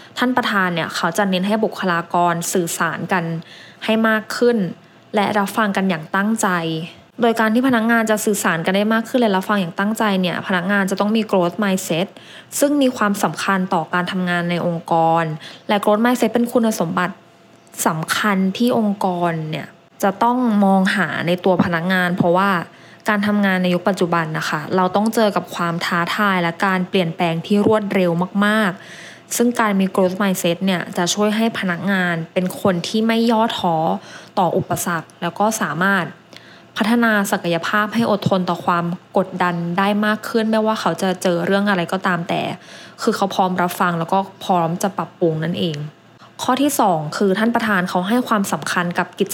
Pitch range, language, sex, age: 175-215 Hz, English, female, 20-39